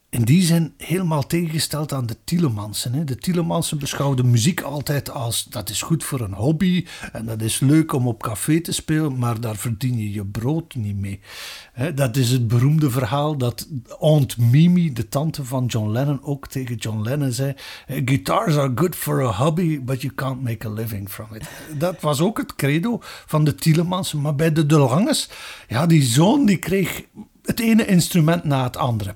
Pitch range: 125-165 Hz